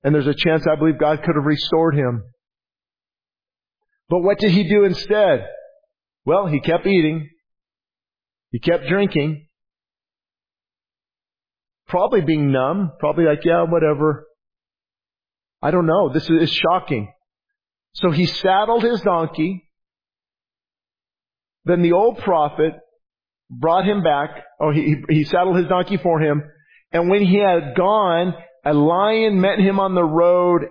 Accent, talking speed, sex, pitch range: American, 135 wpm, male, 155-210 Hz